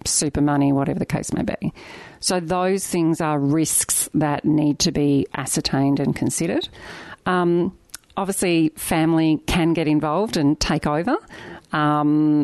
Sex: female